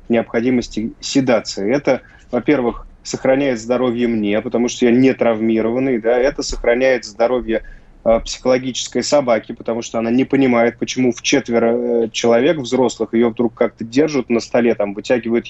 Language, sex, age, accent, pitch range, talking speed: Russian, male, 20-39, native, 115-135 Hz, 145 wpm